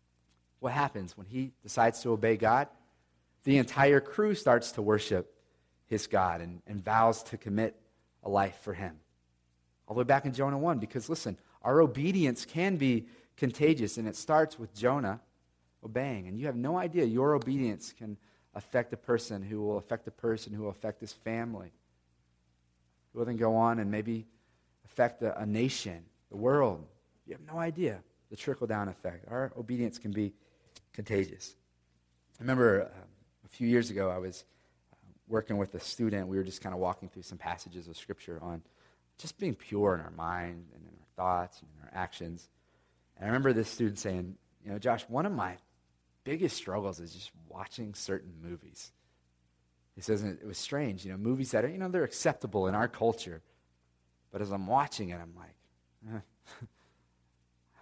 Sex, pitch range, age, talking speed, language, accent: male, 80-115 Hz, 40-59, 185 wpm, English, American